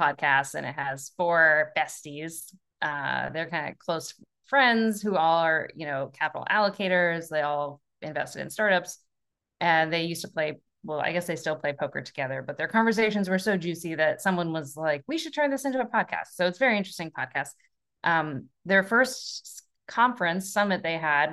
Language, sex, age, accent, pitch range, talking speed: English, female, 20-39, American, 155-210 Hz, 185 wpm